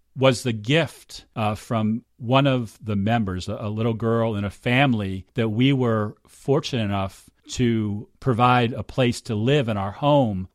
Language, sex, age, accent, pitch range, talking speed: English, male, 40-59, American, 100-120 Hz, 165 wpm